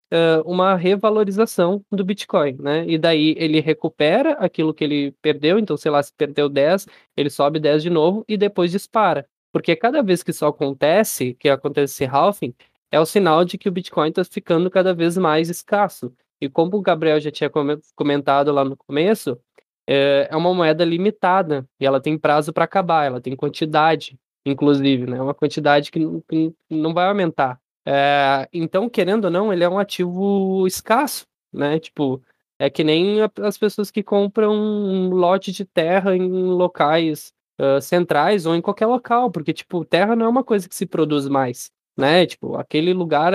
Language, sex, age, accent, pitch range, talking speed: Portuguese, male, 20-39, Brazilian, 145-190 Hz, 175 wpm